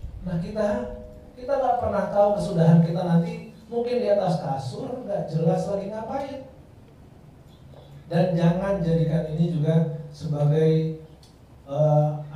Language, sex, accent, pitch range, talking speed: Indonesian, male, native, 160-195 Hz, 115 wpm